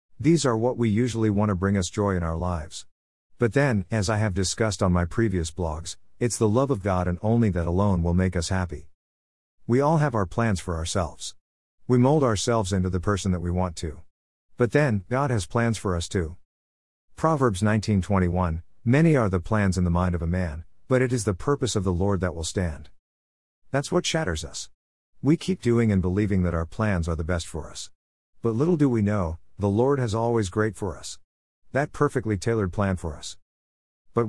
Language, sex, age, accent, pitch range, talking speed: English, male, 50-69, American, 85-115 Hz, 210 wpm